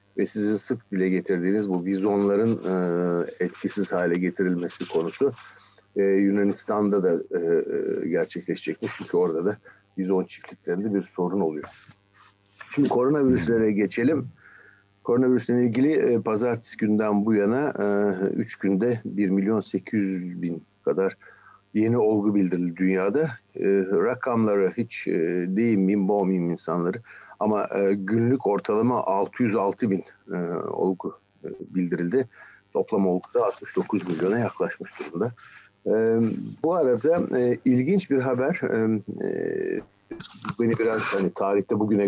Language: Turkish